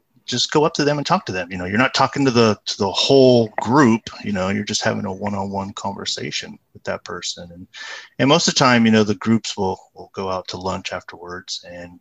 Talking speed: 245 wpm